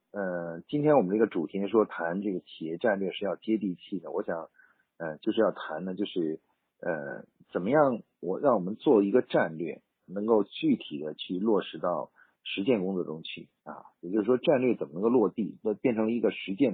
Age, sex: 50-69, male